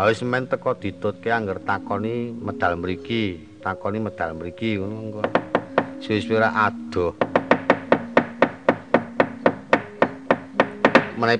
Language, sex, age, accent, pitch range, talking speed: Indonesian, male, 50-69, native, 100-125 Hz, 90 wpm